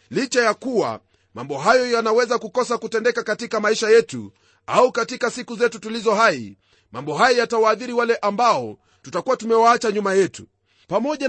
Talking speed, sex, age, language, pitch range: 145 wpm, male, 30-49, Swahili, 185-240 Hz